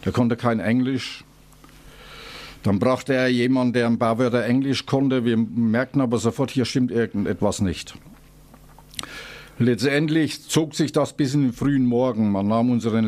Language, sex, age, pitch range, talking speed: German, male, 50-69, 115-135 Hz, 155 wpm